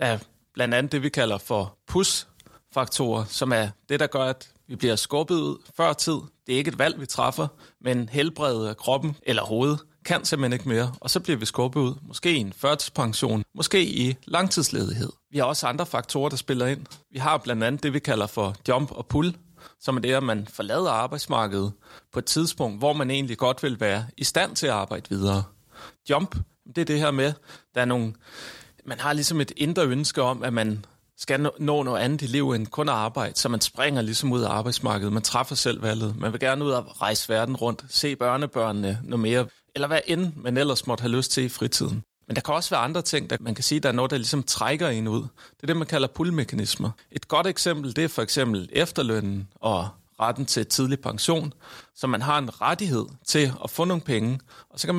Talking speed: 225 wpm